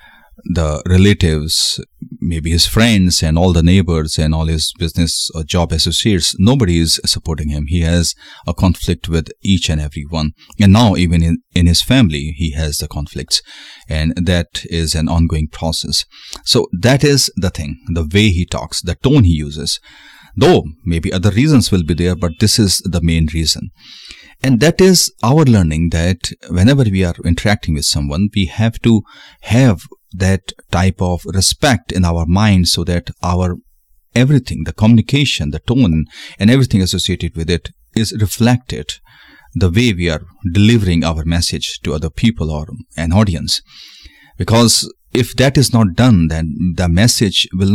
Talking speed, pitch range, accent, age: 165 wpm, 80-105 Hz, native, 30-49